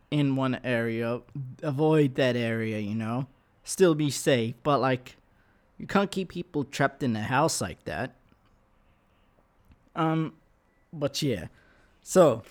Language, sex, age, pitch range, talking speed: English, male, 20-39, 120-170 Hz, 130 wpm